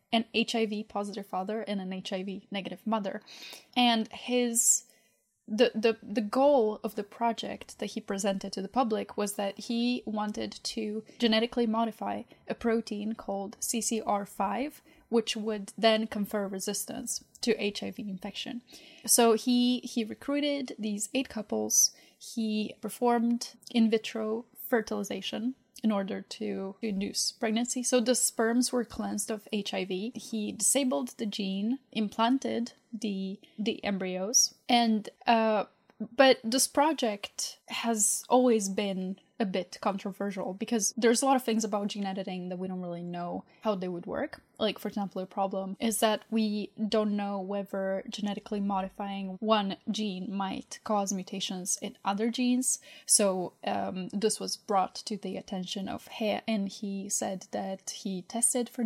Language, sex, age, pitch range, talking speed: English, female, 10-29, 195-235 Hz, 145 wpm